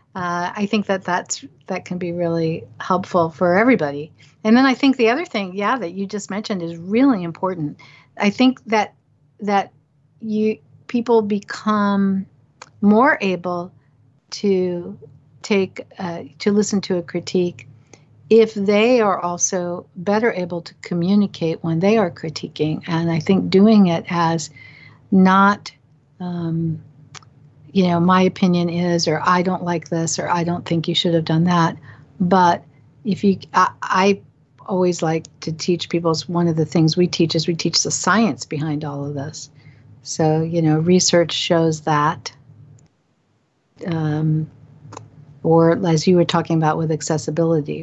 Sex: female